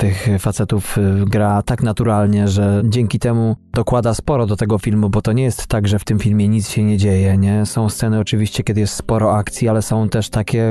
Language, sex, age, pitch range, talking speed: Polish, male, 20-39, 105-120 Hz, 215 wpm